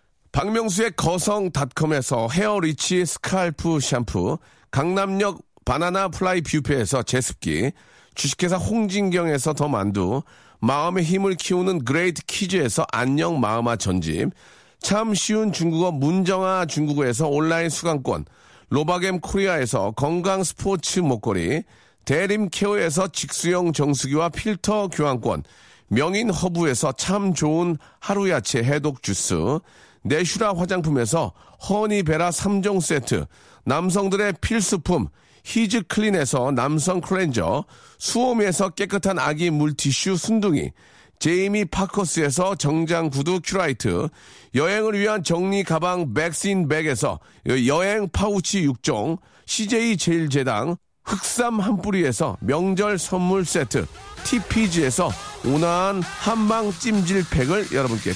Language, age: Korean, 40-59